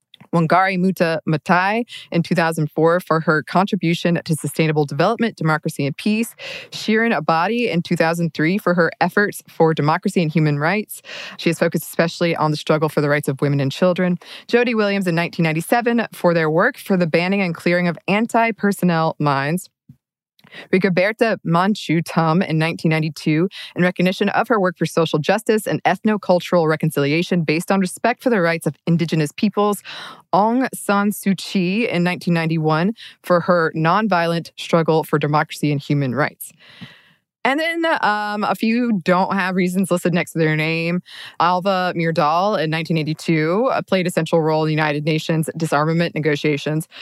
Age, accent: 20-39, American